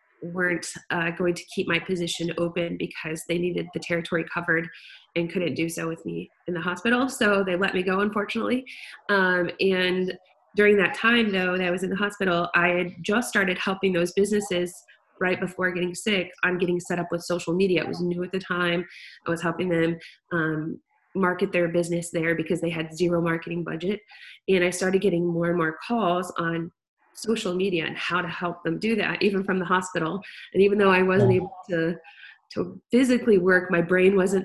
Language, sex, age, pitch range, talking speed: English, female, 20-39, 170-195 Hz, 200 wpm